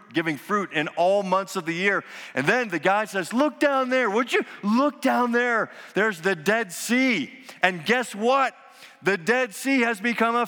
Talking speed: 195 wpm